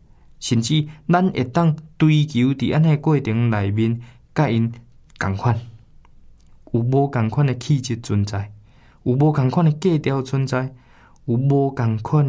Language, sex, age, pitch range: Chinese, male, 20-39, 110-140 Hz